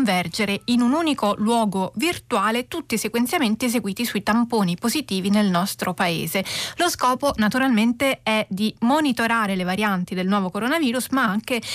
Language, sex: Italian, female